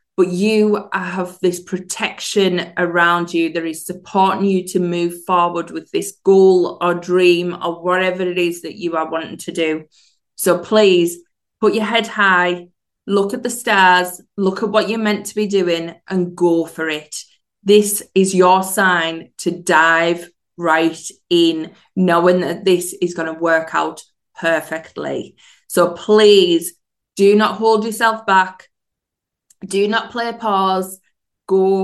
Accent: British